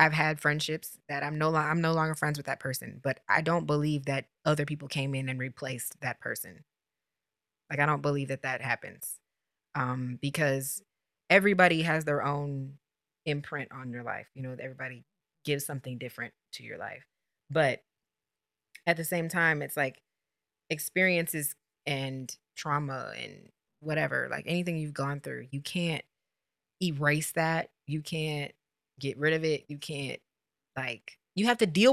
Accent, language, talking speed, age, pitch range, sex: American, English, 165 wpm, 20-39, 140-165 Hz, female